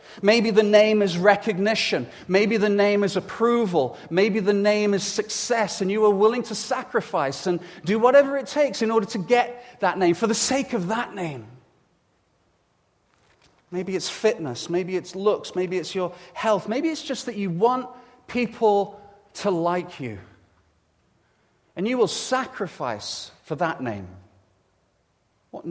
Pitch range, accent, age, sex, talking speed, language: 160-225 Hz, British, 40-59, male, 155 wpm, English